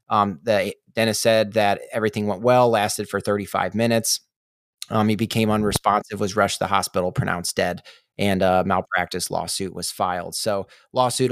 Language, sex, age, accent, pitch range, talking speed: English, male, 30-49, American, 100-115 Hz, 165 wpm